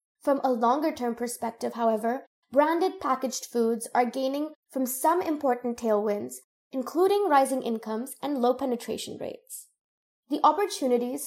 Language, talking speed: English, 120 wpm